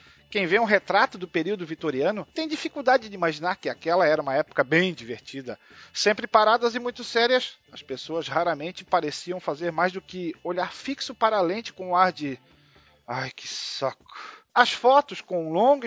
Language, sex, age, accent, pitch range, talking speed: Portuguese, male, 40-59, Brazilian, 170-255 Hz, 180 wpm